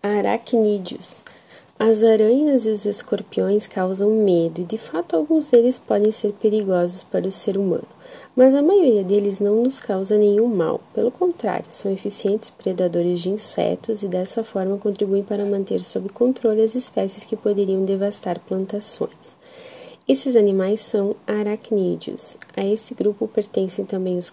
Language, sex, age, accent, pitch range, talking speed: Portuguese, female, 30-49, Brazilian, 195-230 Hz, 150 wpm